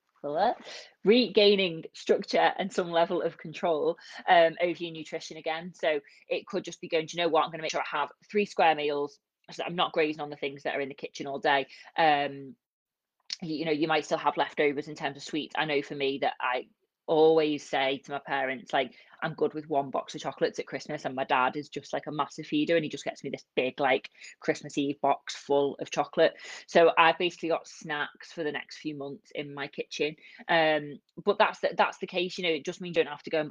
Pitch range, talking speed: 145-175 Hz, 245 wpm